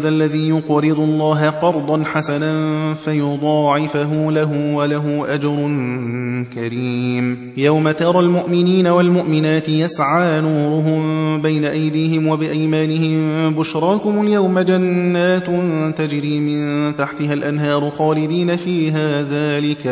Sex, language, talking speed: male, Persian, 85 wpm